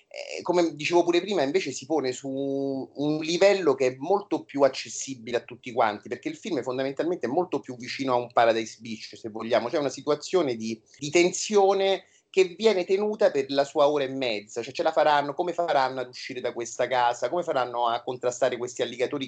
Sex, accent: male, native